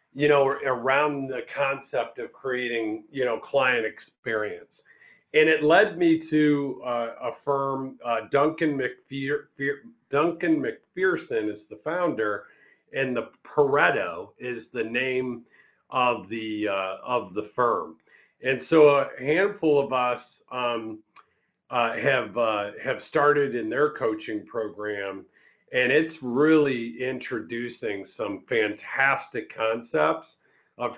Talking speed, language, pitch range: 120 wpm, English, 115-150 Hz